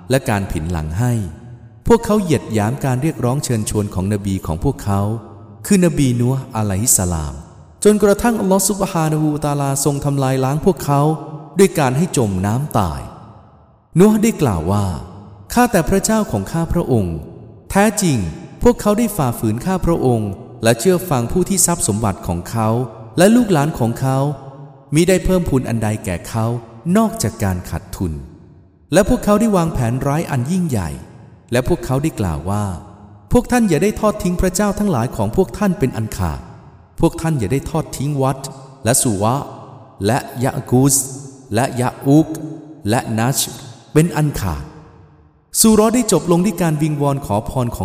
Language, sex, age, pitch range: English, male, 20-39, 105-170 Hz